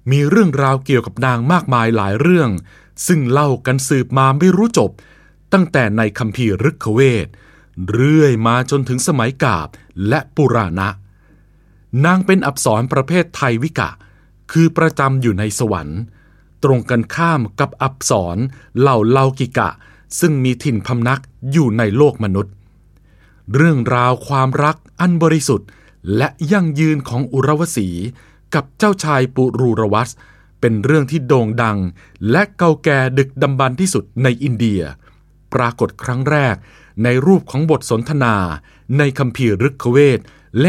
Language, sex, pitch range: Thai, male, 110-150 Hz